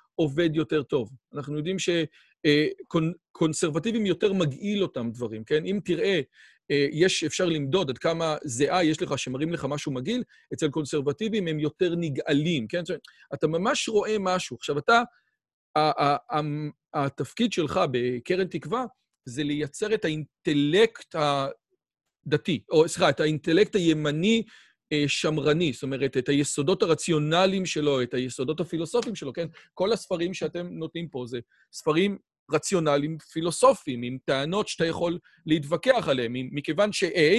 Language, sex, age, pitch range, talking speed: Hebrew, male, 40-59, 145-185 Hz, 140 wpm